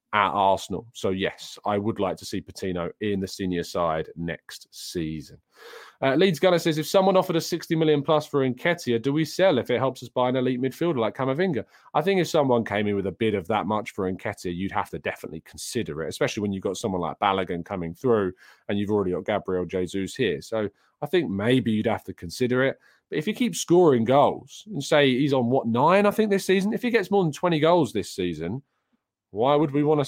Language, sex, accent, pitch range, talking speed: English, male, British, 100-170 Hz, 235 wpm